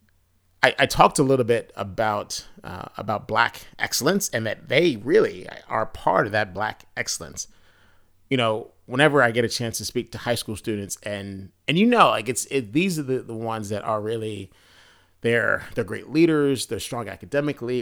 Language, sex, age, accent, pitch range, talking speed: English, male, 30-49, American, 95-130 Hz, 190 wpm